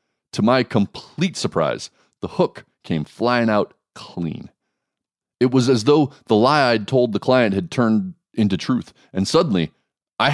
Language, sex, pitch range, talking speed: English, male, 85-120 Hz, 155 wpm